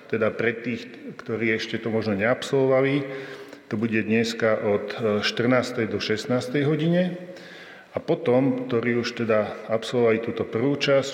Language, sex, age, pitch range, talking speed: Slovak, male, 40-59, 110-125 Hz, 135 wpm